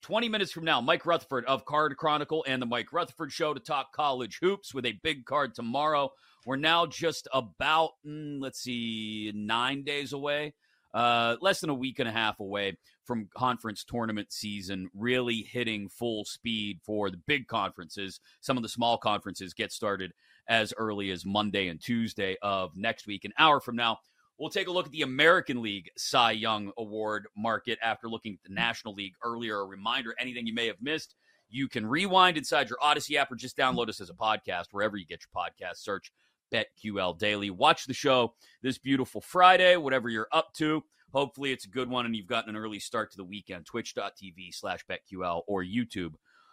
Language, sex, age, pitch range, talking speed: English, male, 30-49, 105-150 Hz, 195 wpm